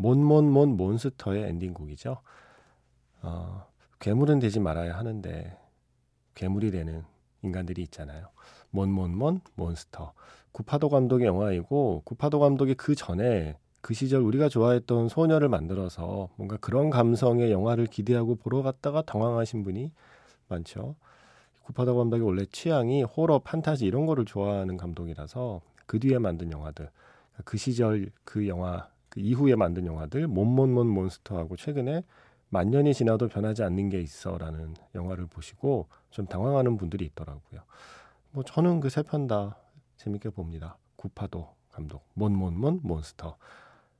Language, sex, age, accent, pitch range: Korean, male, 40-59, native, 90-125 Hz